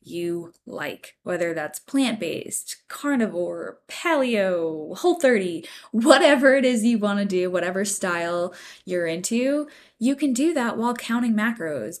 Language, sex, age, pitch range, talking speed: English, female, 10-29, 175-235 Hz, 135 wpm